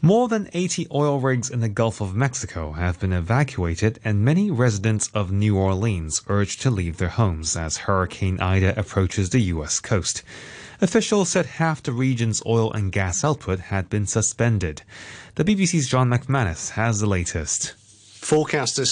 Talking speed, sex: 160 wpm, male